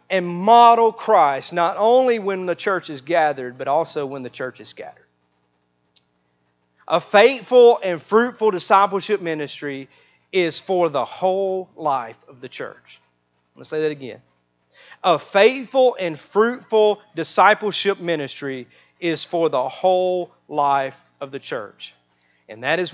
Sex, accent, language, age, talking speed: male, American, English, 40-59, 140 wpm